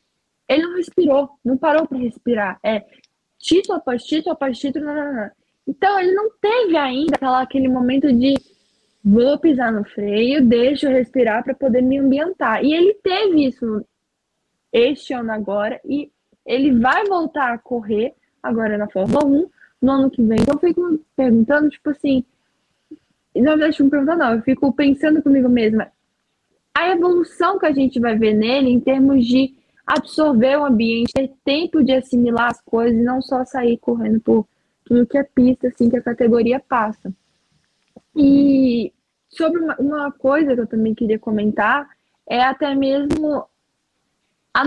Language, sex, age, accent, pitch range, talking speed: Portuguese, female, 10-29, Brazilian, 240-310 Hz, 165 wpm